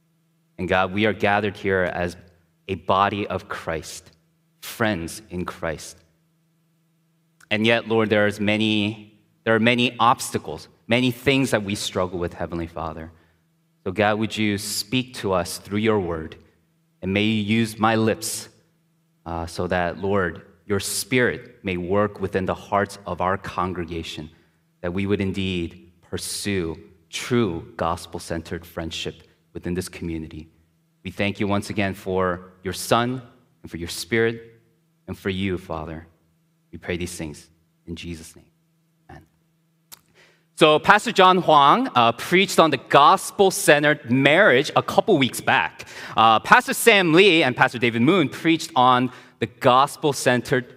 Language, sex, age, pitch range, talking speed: English, male, 30-49, 90-130 Hz, 145 wpm